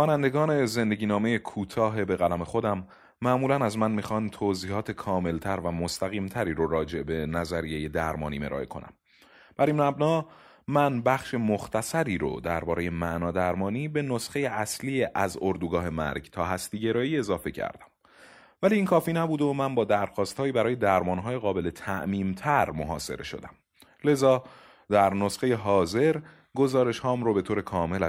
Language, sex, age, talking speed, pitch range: Persian, male, 30-49, 145 wpm, 90-130 Hz